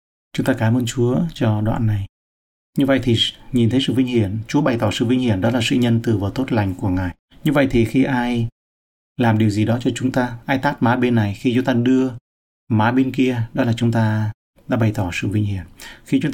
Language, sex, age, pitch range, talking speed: Vietnamese, male, 30-49, 105-130 Hz, 250 wpm